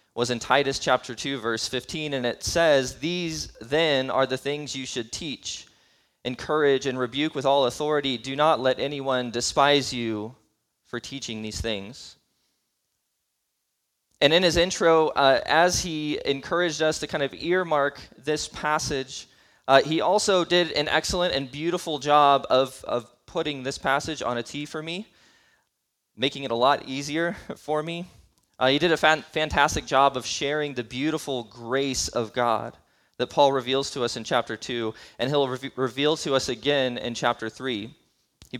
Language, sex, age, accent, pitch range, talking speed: English, male, 20-39, American, 130-155 Hz, 165 wpm